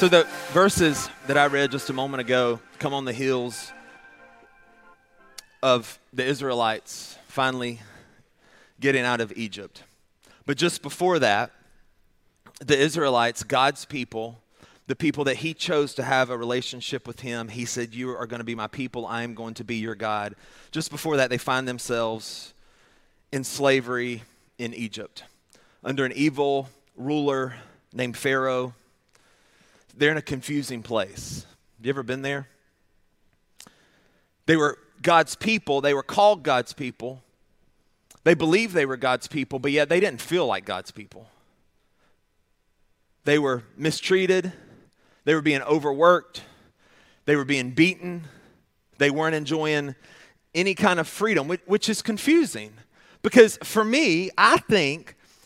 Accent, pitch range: American, 120-160 Hz